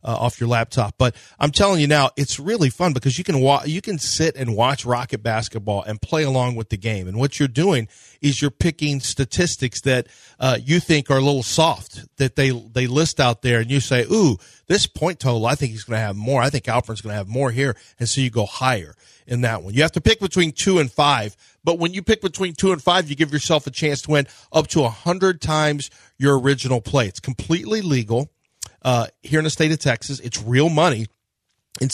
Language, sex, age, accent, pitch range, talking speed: English, male, 40-59, American, 120-150 Hz, 235 wpm